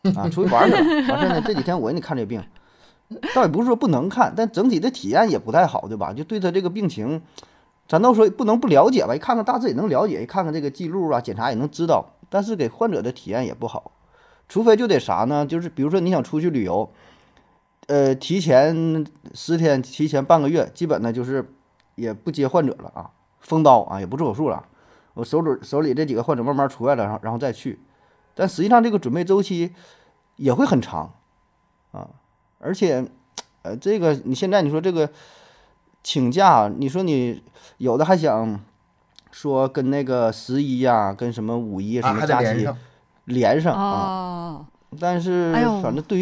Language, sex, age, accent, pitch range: Chinese, male, 20-39, native, 130-180 Hz